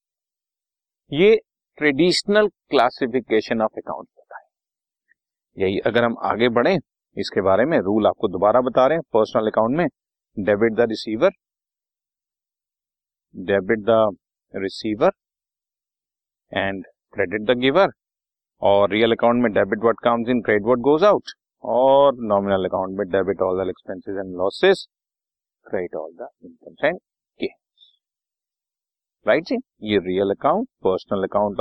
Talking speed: 130 wpm